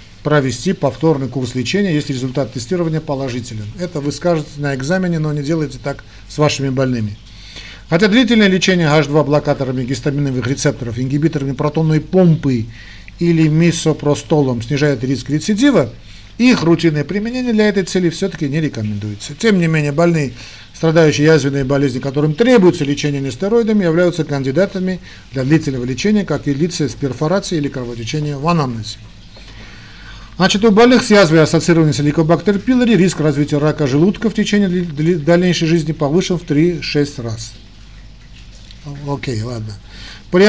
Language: Russian